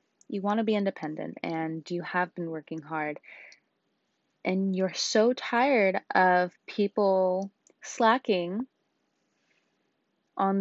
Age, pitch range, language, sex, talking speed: 20-39, 160-195 Hz, English, female, 105 wpm